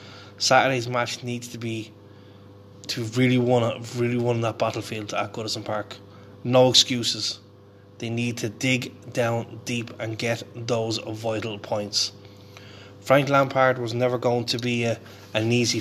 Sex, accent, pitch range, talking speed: male, Irish, 100-125 Hz, 140 wpm